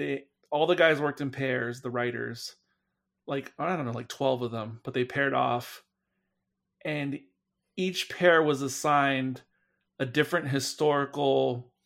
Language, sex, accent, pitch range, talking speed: English, male, American, 125-150 Hz, 145 wpm